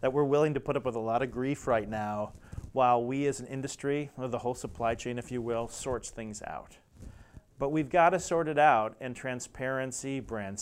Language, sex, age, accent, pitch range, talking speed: English, male, 30-49, American, 110-135 Hz, 220 wpm